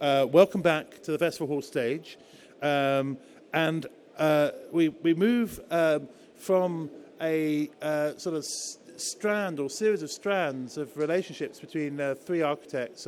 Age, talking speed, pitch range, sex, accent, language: 50-69, 145 wpm, 145-185 Hz, male, British, English